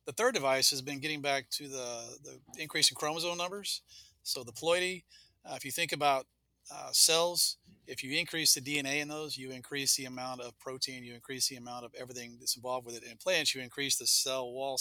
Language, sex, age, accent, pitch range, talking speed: English, male, 40-59, American, 120-145 Hz, 220 wpm